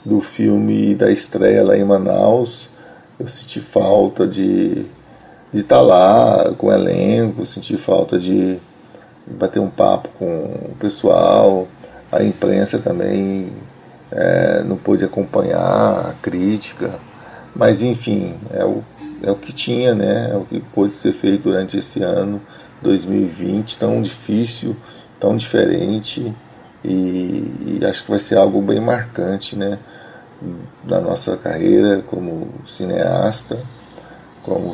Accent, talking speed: Brazilian, 130 wpm